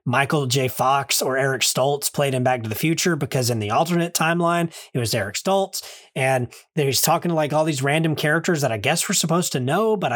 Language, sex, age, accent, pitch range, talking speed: English, male, 30-49, American, 130-170 Hz, 225 wpm